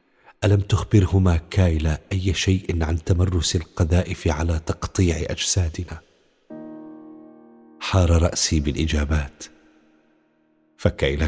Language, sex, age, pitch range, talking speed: Arabic, male, 40-59, 80-90 Hz, 80 wpm